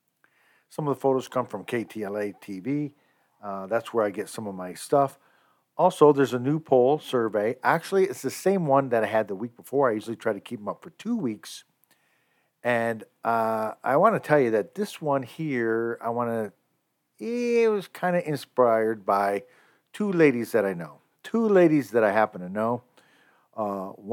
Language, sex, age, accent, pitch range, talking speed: English, male, 50-69, American, 105-145 Hz, 190 wpm